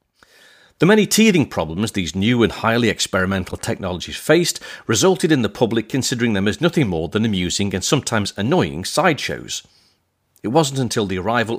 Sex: male